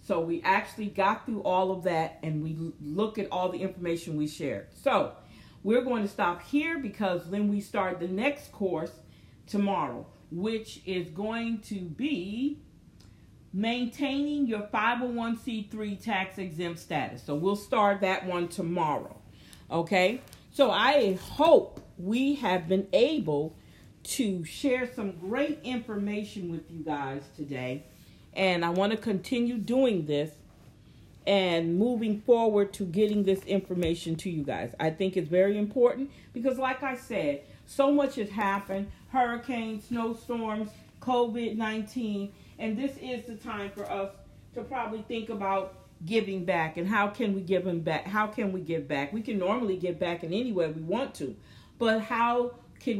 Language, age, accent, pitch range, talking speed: English, 40-59, American, 175-230 Hz, 155 wpm